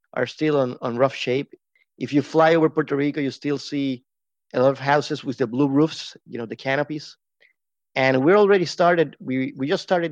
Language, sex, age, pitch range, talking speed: English, male, 30-49, 125-150 Hz, 210 wpm